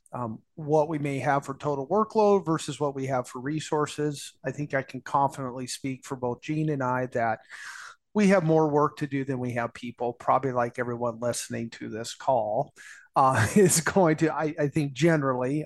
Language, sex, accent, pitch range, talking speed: English, male, American, 125-155 Hz, 195 wpm